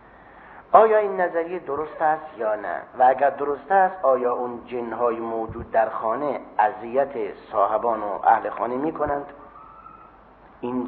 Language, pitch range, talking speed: Persian, 120-170 Hz, 145 wpm